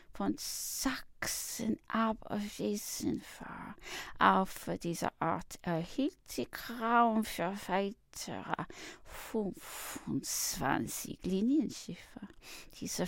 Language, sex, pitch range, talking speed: English, female, 165-235 Hz, 70 wpm